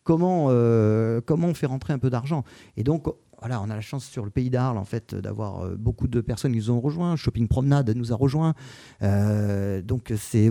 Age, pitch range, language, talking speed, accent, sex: 40-59, 110-145 Hz, French, 215 wpm, French, male